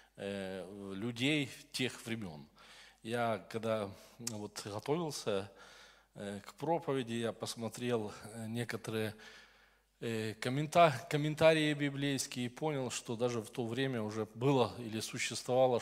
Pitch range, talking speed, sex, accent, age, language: 110-140 Hz, 90 wpm, male, native, 20-39, Russian